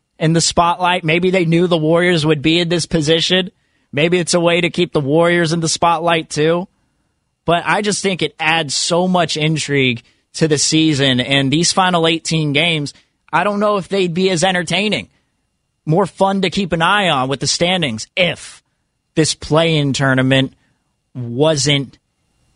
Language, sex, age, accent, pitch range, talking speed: English, male, 20-39, American, 140-175 Hz, 175 wpm